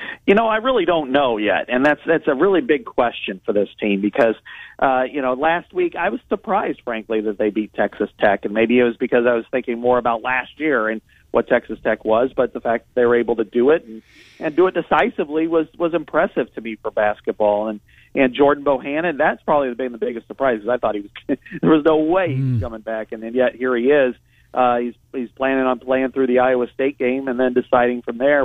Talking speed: 245 wpm